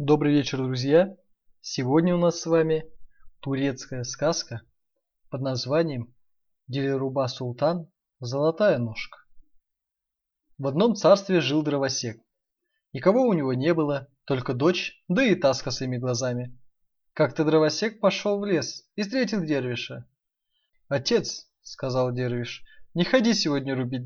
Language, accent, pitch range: Russian, native, 130-175 Hz